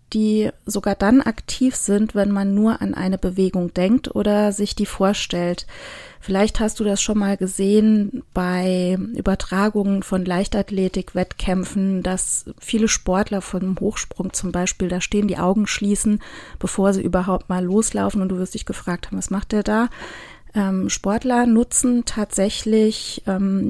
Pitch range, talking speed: 190-225 Hz, 145 wpm